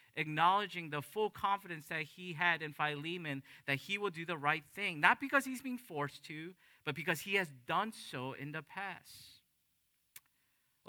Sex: male